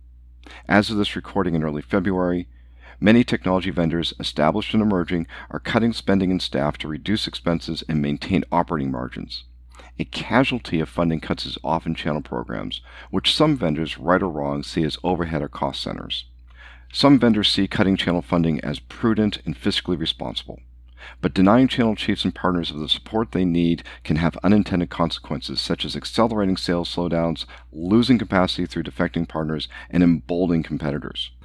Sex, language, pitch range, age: male, English, 75-95 Hz, 50-69